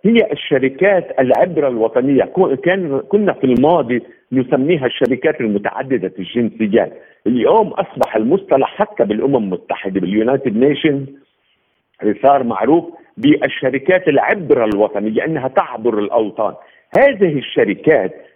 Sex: male